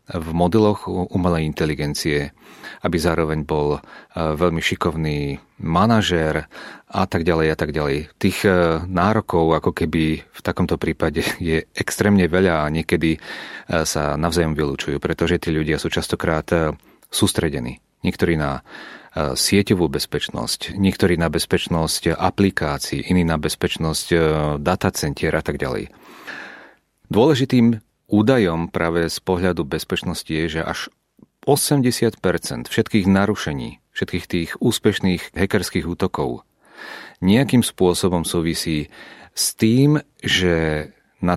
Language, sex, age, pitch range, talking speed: Czech, male, 30-49, 80-95 Hz, 110 wpm